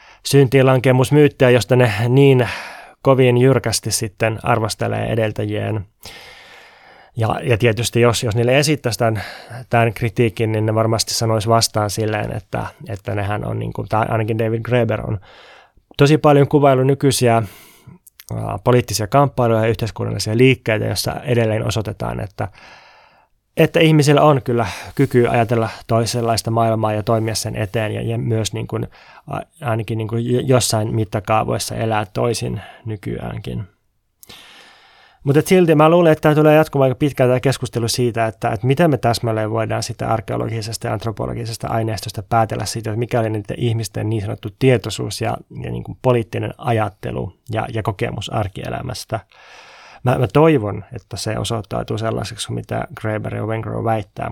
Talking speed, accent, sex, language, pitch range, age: 145 wpm, native, male, Finnish, 110-125 Hz, 20-39